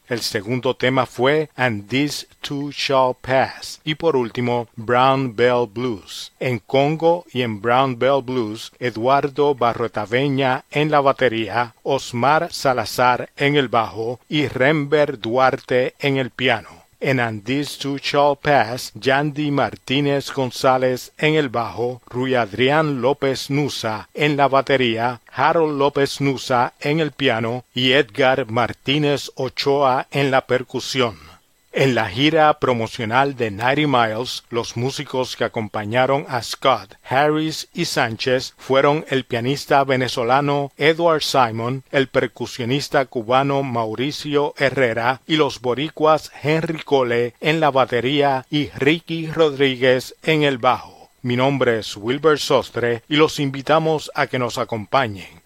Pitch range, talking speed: 120-145 Hz, 130 wpm